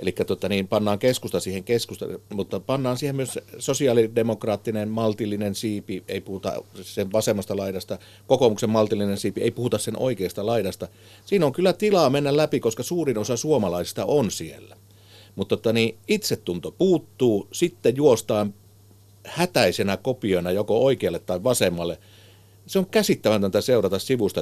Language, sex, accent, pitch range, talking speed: Finnish, male, native, 100-130 Hz, 135 wpm